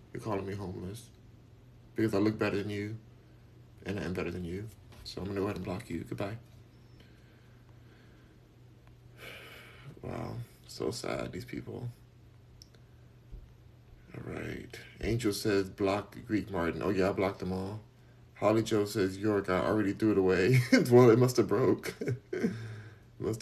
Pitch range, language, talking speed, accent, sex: 95-120 Hz, English, 145 wpm, American, male